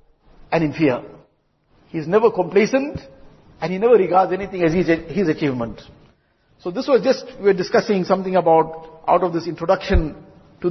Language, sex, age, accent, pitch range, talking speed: English, male, 50-69, Indian, 160-185 Hz, 170 wpm